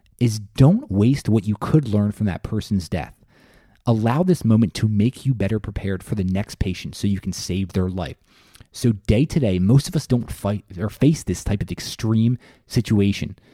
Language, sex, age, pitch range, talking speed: English, male, 30-49, 95-120 Hz, 190 wpm